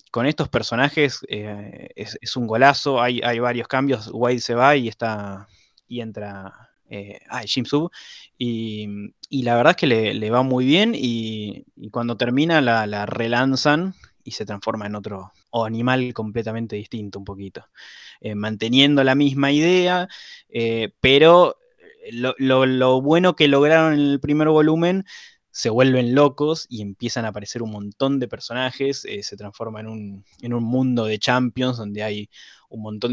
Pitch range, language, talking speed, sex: 105-135 Hz, Spanish, 170 wpm, male